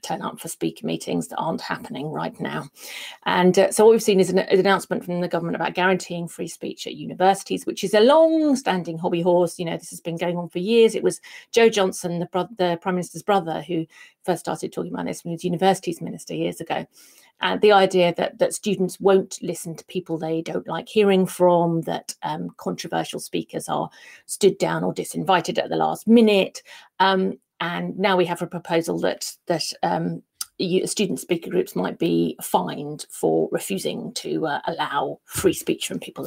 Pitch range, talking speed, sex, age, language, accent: 175-255 Hz, 200 wpm, female, 40-59, English, British